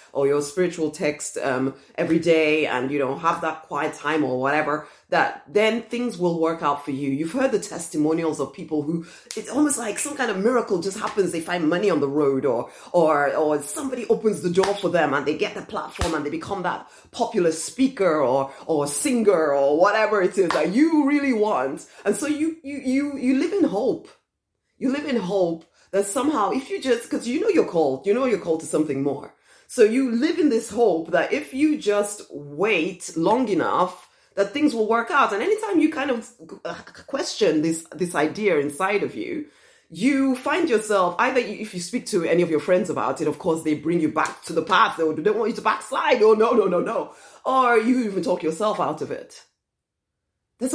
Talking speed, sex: 215 wpm, female